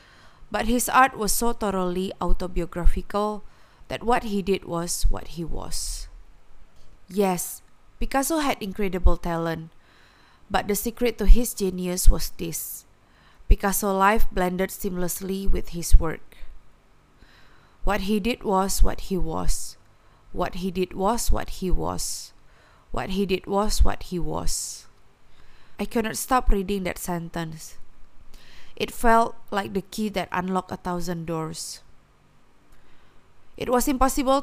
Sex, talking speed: female, 130 wpm